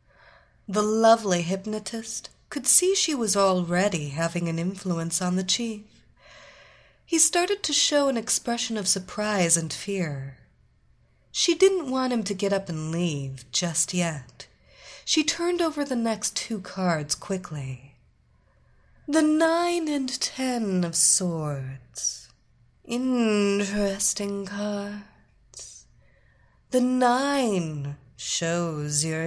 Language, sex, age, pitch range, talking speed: English, female, 30-49, 170-245 Hz, 115 wpm